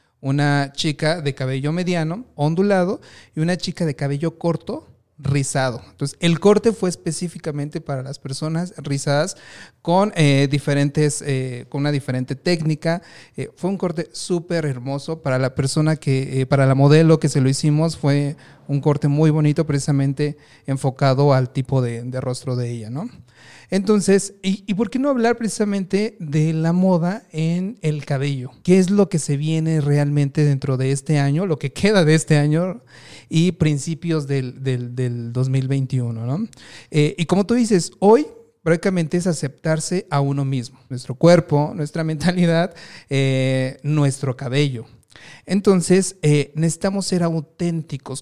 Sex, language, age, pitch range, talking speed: male, Spanish, 40-59, 135-170 Hz, 155 wpm